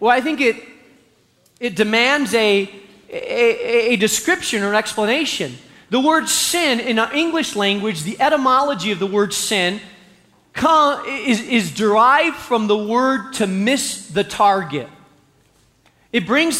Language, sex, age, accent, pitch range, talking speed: English, male, 40-59, American, 205-275 Hz, 135 wpm